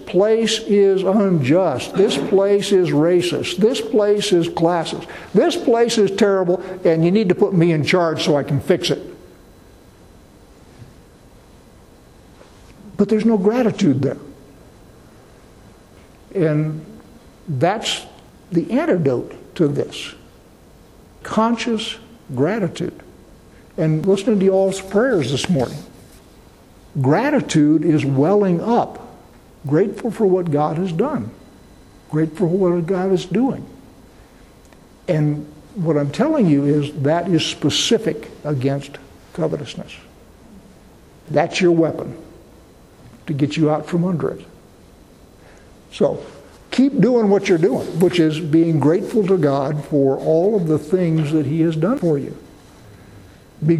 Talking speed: 120 wpm